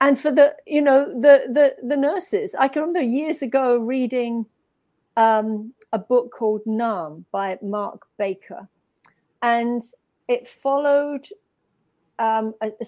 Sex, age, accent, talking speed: female, 50-69, British, 135 wpm